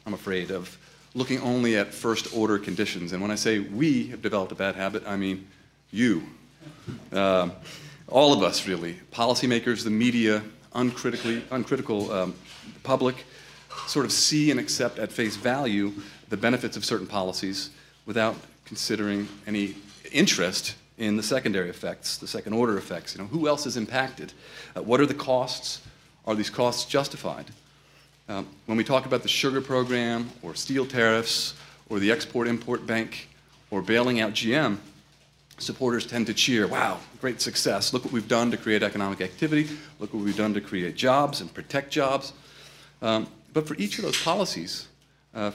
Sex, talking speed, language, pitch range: male, 165 wpm, English, 100-125 Hz